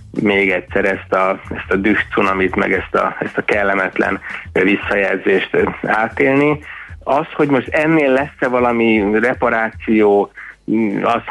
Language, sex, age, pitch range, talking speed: Hungarian, male, 30-49, 100-120 Hz, 120 wpm